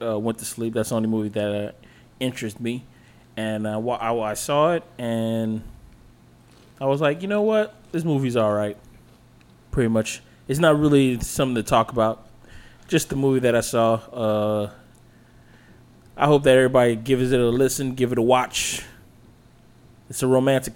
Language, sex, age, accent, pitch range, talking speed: English, male, 20-39, American, 110-130 Hz, 170 wpm